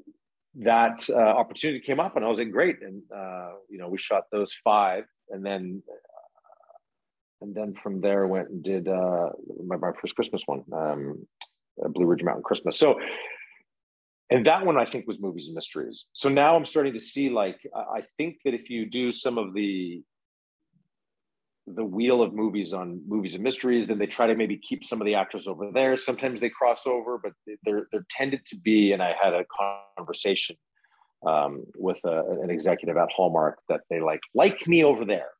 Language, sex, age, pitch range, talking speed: English, male, 40-59, 100-125 Hz, 195 wpm